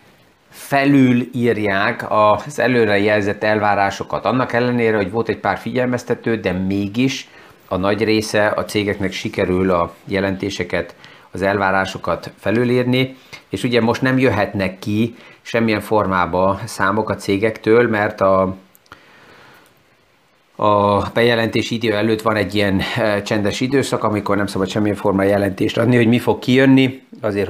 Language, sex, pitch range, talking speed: Hungarian, male, 95-115 Hz, 125 wpm